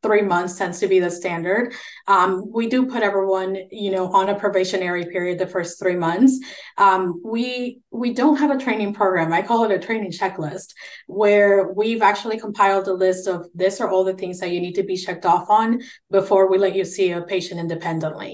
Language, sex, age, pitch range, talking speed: English, female, 20-39, 175-205 Hz, 210 wpm